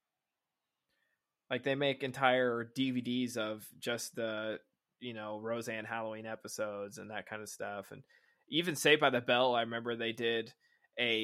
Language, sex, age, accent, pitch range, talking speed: English, male, 20-39, American, 110-125 Hz, 155 wpm